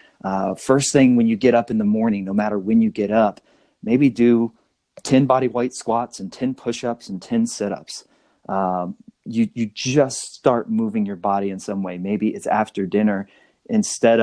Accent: American